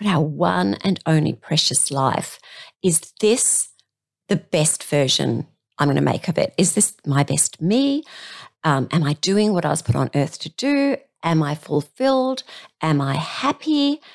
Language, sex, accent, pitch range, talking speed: English, female, Australian, 155-245 Hz, 175 wpm